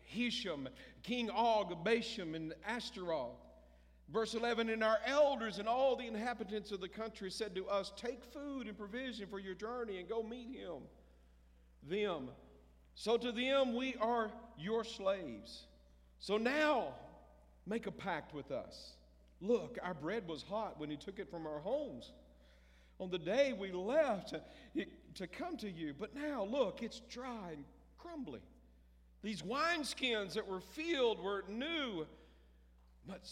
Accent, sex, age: American, male, 50-69